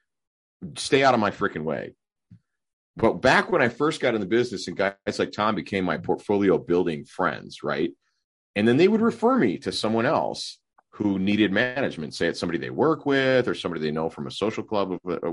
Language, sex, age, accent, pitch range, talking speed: English, male, 40-59, American, 80-115 Hz, 210 wpm